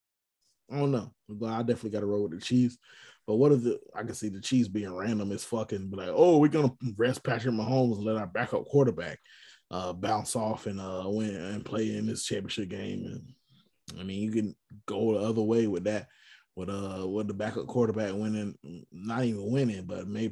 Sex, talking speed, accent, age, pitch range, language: male, 220 wpm, American, 20-39, 105-125 Hz, English